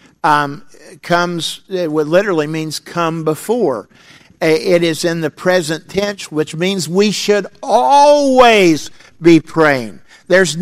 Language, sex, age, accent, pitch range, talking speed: English, male, 50-69, American, 145-180 Hz, 130 wpm